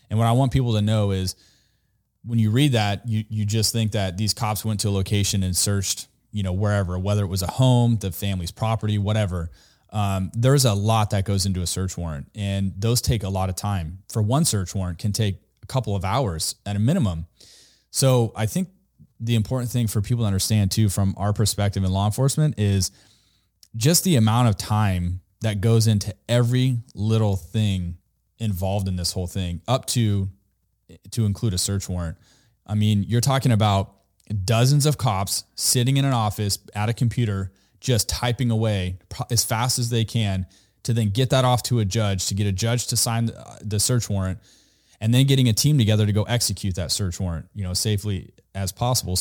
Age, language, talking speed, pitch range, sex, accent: 30-49, English, 200 wpm, 95-115 Hz, male, American